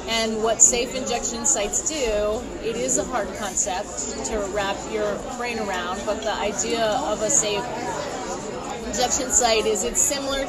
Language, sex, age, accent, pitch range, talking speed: English, female, 30-49, American, 210-230 Hz, 155 wpm